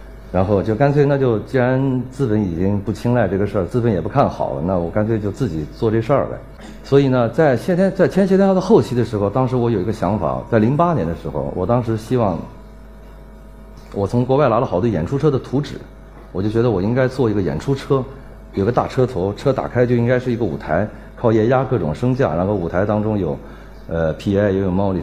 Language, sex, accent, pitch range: Chinese, male, native, 100-130 Hz